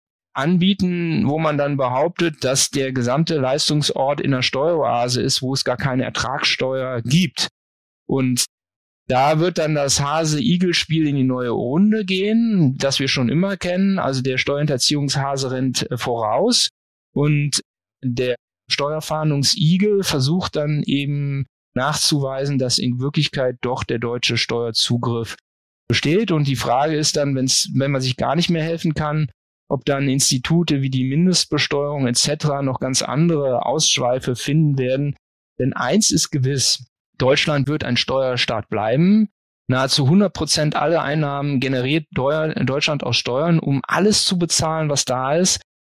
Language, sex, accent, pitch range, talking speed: German, male, German, 125-155 Hz, 140 wpm